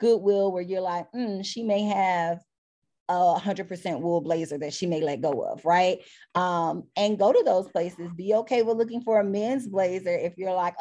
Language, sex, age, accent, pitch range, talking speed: English, female, 20-39, American, 175-210 Hz, 205 wpm